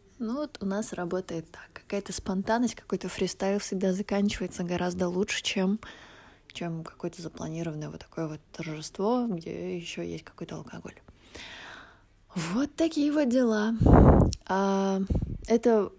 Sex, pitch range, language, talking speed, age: female, 185-210 Hz, Russian, 120 wpm, 20-39